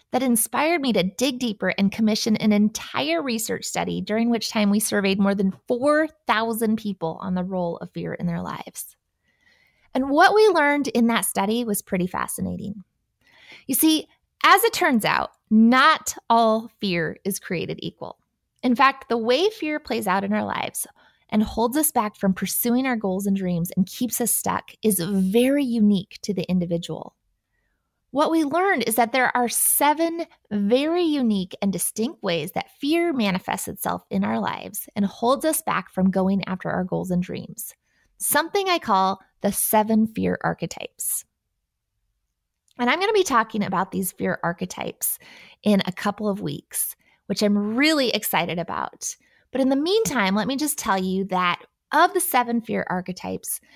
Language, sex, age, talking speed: English, female, 20-39, 170 wpm